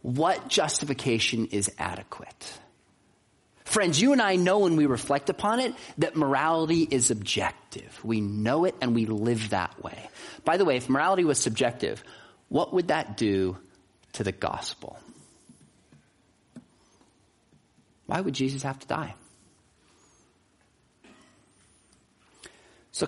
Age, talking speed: 40-59, 120 wpm